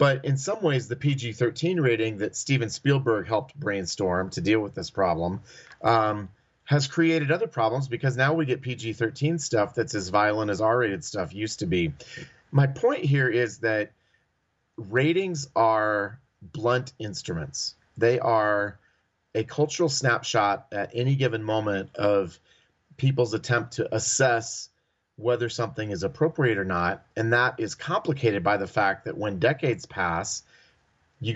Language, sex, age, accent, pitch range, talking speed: English, male, 30-49, American, 110-140 Hz, 150 wpm